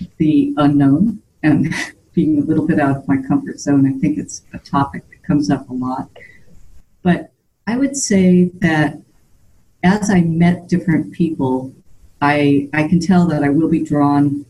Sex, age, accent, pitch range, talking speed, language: female, 50-69, American, 140-170 Hz, 170 wpm, English